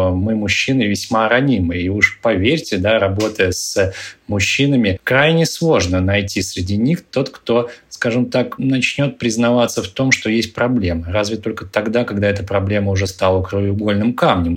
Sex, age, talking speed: male, 20-39, 150 wpm